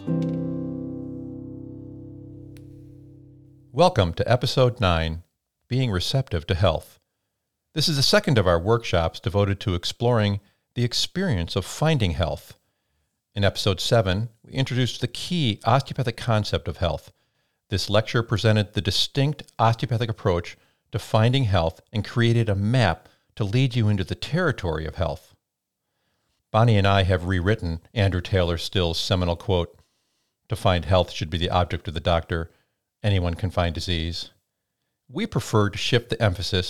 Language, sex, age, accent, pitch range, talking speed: English, male, 50-69, American, 90-120 Hz, 140 wpm